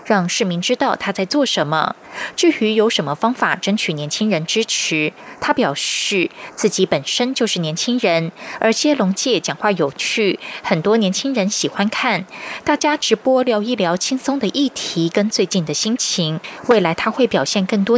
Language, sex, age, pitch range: German, female, 20-39, 180-245 Hz